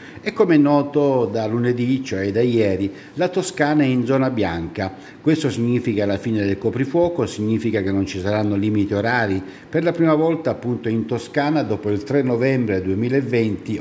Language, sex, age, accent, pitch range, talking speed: Italian, male, 50-69, native, 105-140 Hz, 175 wpm